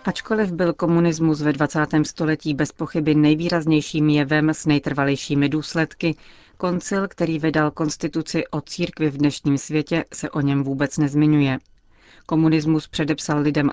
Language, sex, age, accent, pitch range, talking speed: Czech, female, 40-59, native, 145-155 Hz, 130 wpm